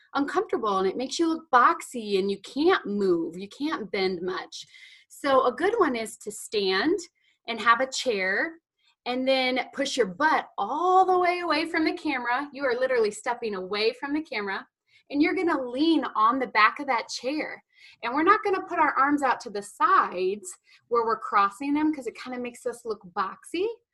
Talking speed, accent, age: 205 wpm, American, 20-39